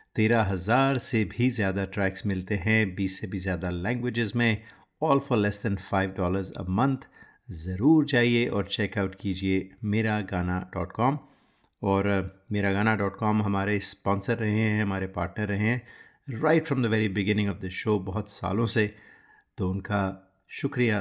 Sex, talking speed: male, 150 wpm